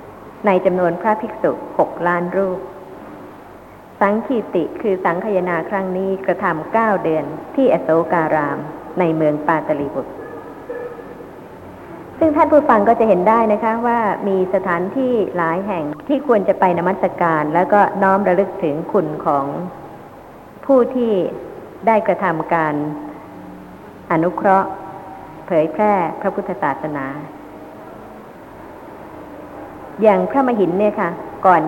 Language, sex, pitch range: Thai, male, 165-215 Hz